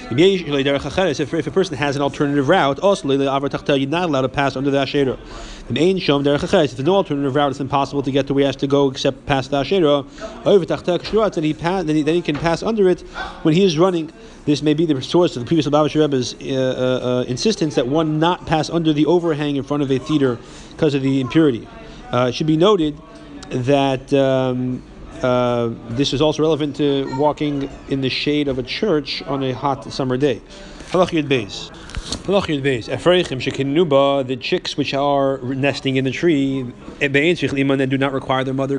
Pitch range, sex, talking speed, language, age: 130-160 Hz, male, 175 wpm, English, 30-49